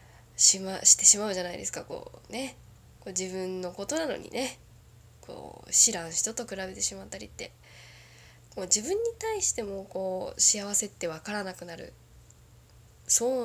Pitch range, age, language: 175-250 Hz, 10-29, Japanese